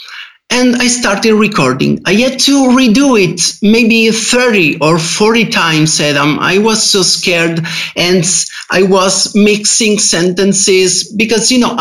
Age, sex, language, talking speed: 50-69, male, English, 135 wpm